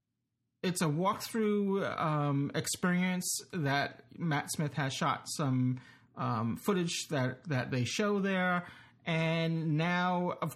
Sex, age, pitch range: male, 30-49, 135-185 Hz